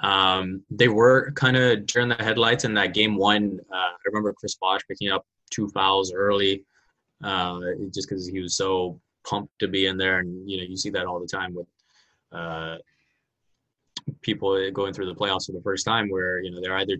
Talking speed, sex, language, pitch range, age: 205 wpm, male, English, 90-100 Hz, 20-39